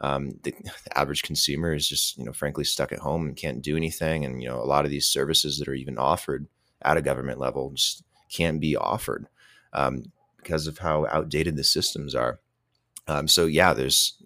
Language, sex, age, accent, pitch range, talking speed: English, male, 30-49, American, 70-80 Hz, 205 wpm